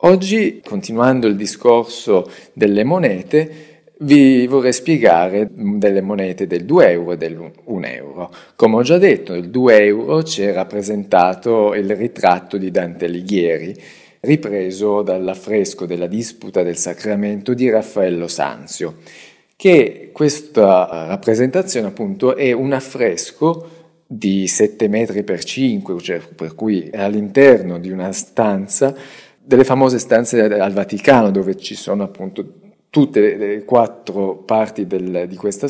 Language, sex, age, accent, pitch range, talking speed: Italian, male, 40-59, native, 100-135 Hz, 130 wpm